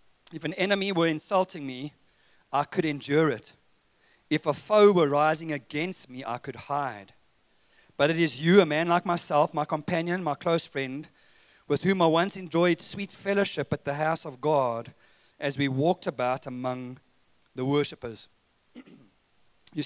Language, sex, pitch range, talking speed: English, male, 135-170 Hz, 160 wpm